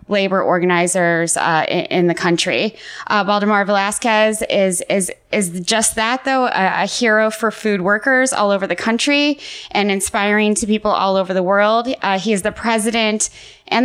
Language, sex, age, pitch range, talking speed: English, female, 20-39, 190-225 Hz, 175 wpm